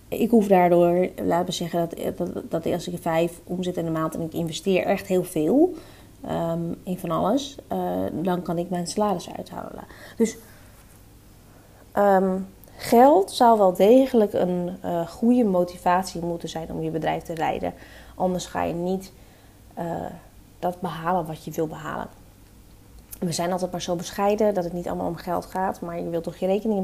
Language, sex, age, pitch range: Dutch, female, 20-39, 165-205 Hz